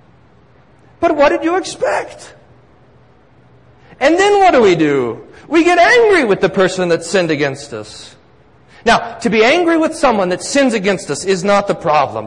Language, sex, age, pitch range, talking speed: English, male, 40-59, 165-220 Hz, 170 wpm